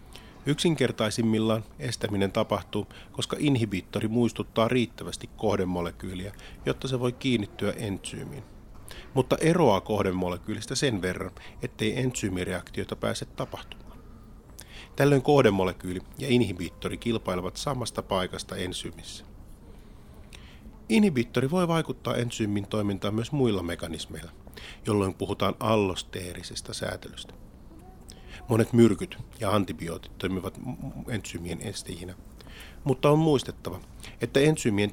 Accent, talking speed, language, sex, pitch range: native, 95 wpm, Finnish, male, 95-125 Hz